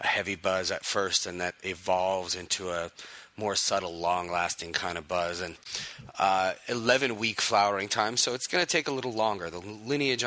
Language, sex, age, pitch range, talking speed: English, male, 30-49, 95-110 Hz, 195 wpm